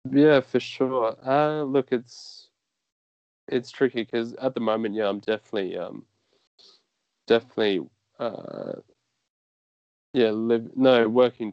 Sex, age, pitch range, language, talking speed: male, 20-39, 105-120 Hz, English, 115 wpm